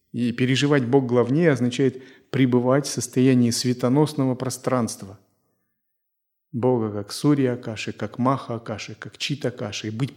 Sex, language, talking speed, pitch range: male, Russian, 130 wpm, 120-155 Hz